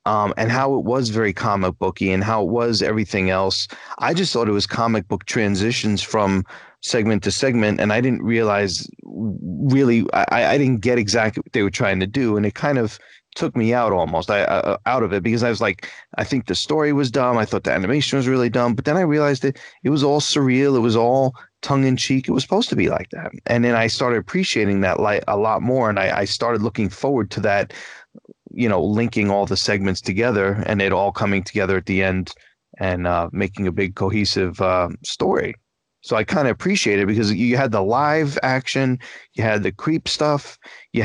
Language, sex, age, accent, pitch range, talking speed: English, male, 30-49, American, 100-130 Hz, 220 wpm